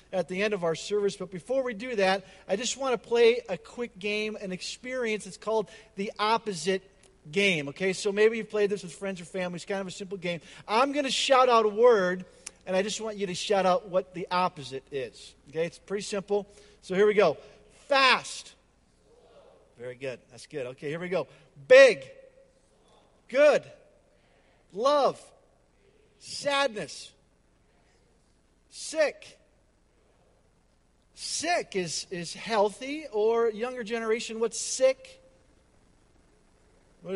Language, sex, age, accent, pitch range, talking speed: English, male, 50-69, American, 185-240 Hz, 150 wpm